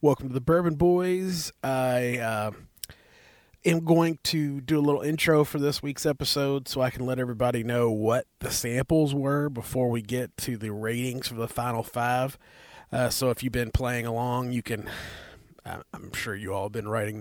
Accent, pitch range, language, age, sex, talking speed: American, 115-140 Hz, English, 30-49, male, 190 wpm